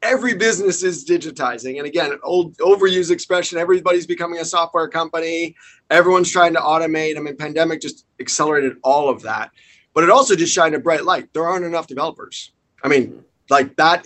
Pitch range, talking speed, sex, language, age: 140-170 Hz, 185 wpm, male, English, 30-49